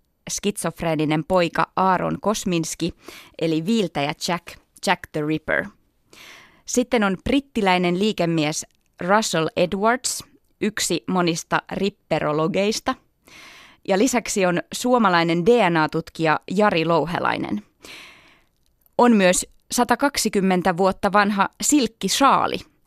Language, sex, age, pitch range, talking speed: Finnish, female, 20-39, 160-205 Hz, 85 wpm